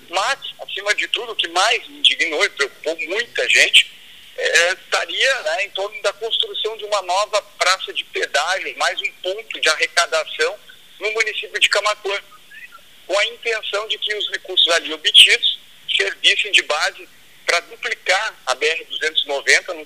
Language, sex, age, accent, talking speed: Portuguese, male, 50-69, Brazilian, 155 wpm